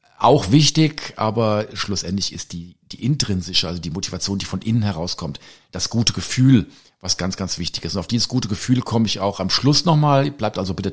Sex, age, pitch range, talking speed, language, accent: male, 50-69, 95-115 Hz, 205 wpm, German, German